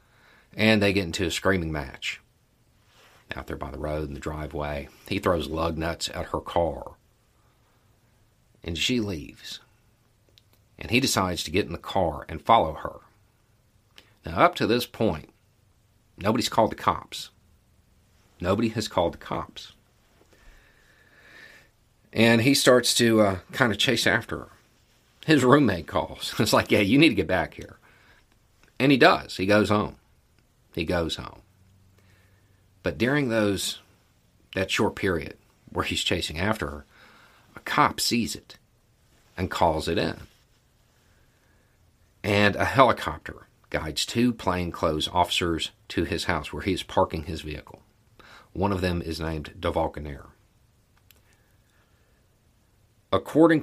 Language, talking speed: English, 135 wpm